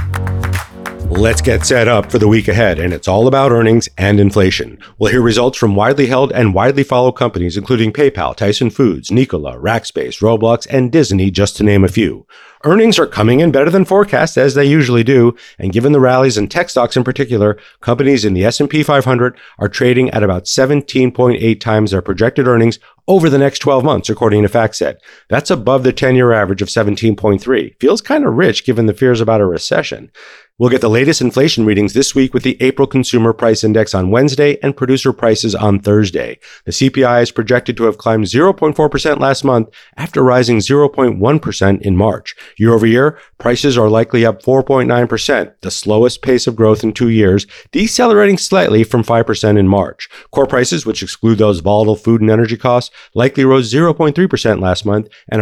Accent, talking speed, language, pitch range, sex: American, 185 wpm, English, 105-135 Hz, male